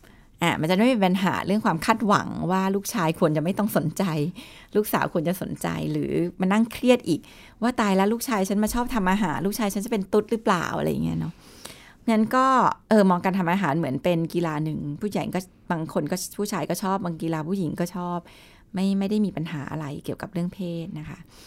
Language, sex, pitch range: Thai, female, 170-220 Hz